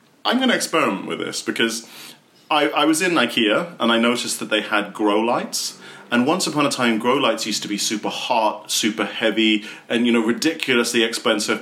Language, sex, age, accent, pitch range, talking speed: English, male, 40-59, British, 105-165 Hz, 200 wpm